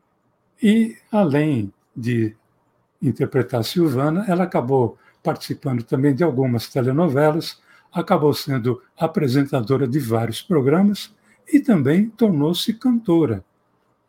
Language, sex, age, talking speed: Portuguese, male, 60-79, 100 wpm